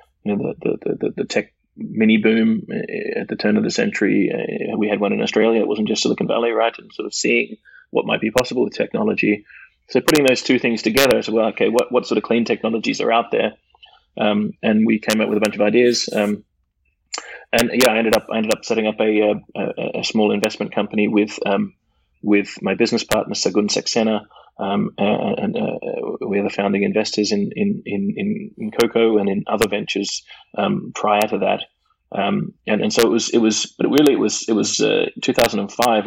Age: 20-39